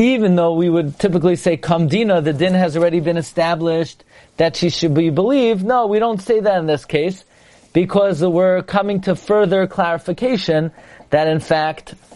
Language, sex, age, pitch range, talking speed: English, male, 40-59, 150-185 Hz, 180 wpm